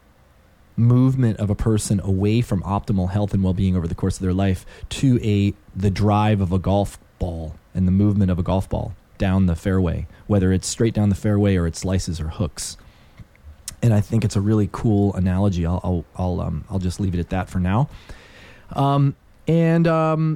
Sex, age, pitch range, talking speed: male, 30-49, 90-135 Hz, 200 wpm